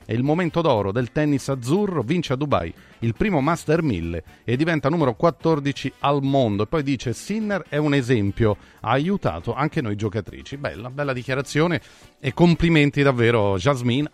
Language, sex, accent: Italian, male, native